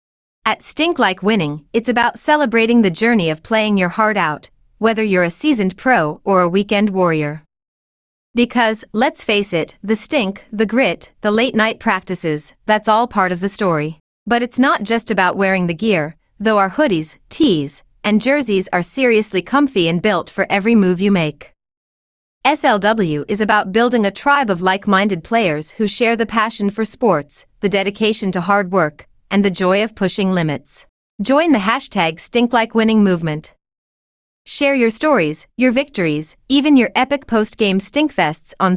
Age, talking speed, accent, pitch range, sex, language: 30-49, 165 wpm, American, 175-235 Hz, female, English